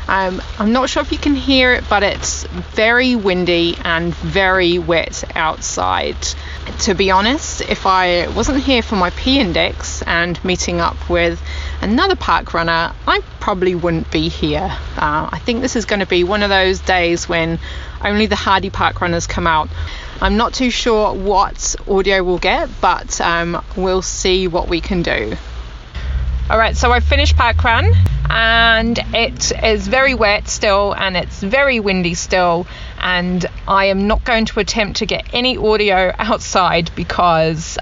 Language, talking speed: English, 165 wpm